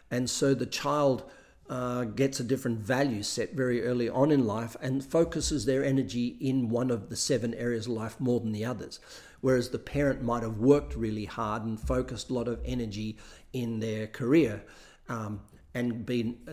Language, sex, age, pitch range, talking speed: English, male, 50-69, 115-135 Hz, 185 wpm